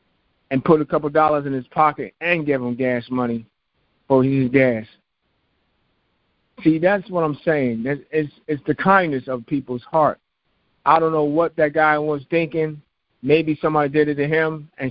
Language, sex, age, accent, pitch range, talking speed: English, male, 50-69, American, 135-155 Hz, 175 wpm